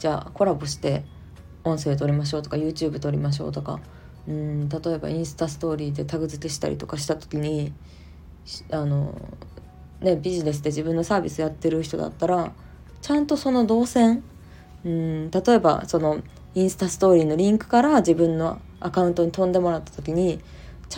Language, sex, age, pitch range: Japanese, female, 20-39, 145-190 Hz